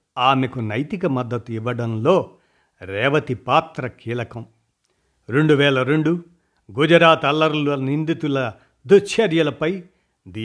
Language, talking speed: Telugu, 85 wpm